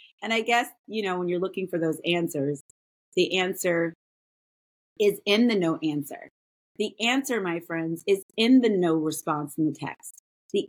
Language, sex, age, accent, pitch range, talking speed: English, female, 30-49, American, 150-200 Hz, 175 wpm